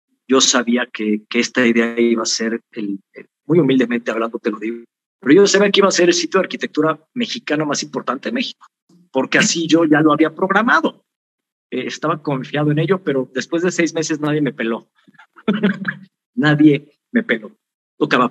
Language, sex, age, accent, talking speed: Spanish, male, 50-69, Mexican, 185 wpm